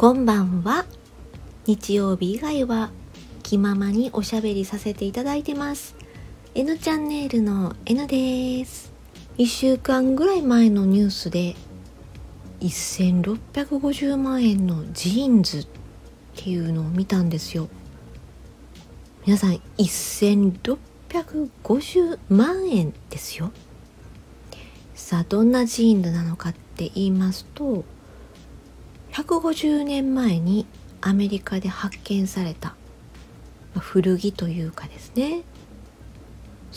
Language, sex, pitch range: Japanese, female, 175-250 Hz